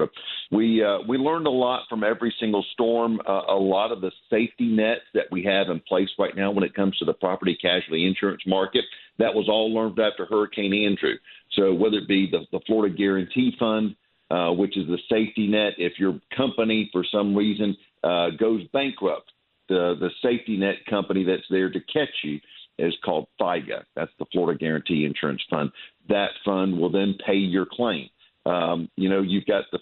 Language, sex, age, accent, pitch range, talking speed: English, male, 50-69, American, 90-110 Hz, 195 wpm